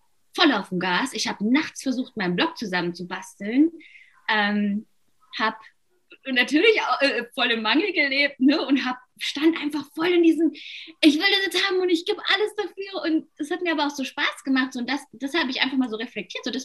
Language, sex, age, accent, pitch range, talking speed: German, female, 20-39, German, 185-275 Hz, 215 wpm